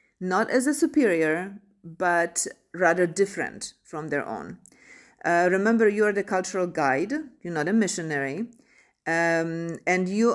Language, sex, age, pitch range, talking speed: English, female, 40-59, 170-215 Hz, 140 wpm